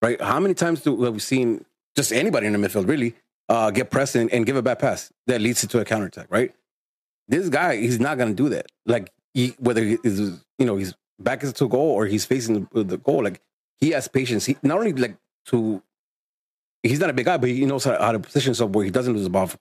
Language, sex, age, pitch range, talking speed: English, male, 30-49, 105-125 Hz, 255 wpm